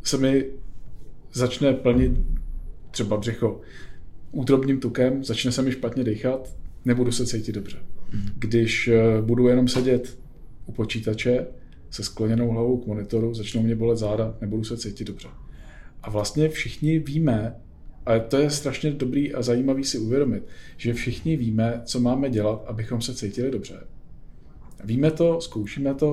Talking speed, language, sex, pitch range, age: 145 wpm, Czech, male, 110-130 Hz, 40-59